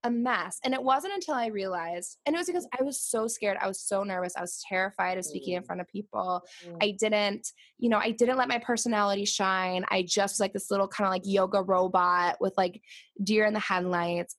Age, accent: 20-39, American